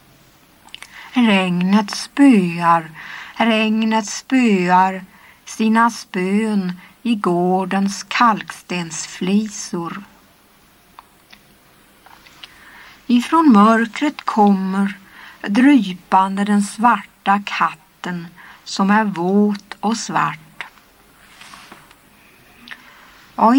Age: 60-79